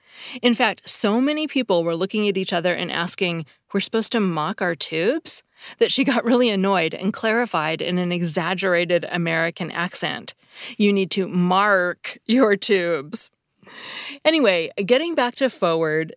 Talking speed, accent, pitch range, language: 150 wpm, American, 170-225 Hz, English